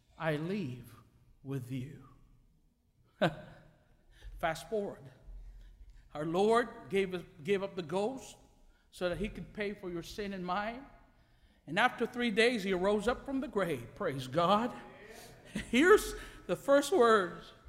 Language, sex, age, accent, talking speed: English, male, 60-79, American, 130 wpm